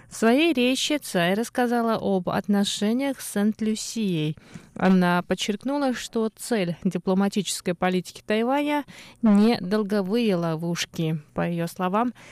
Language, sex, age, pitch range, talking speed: Russian, female, 20-39, 170-220 Hz, 105 wpm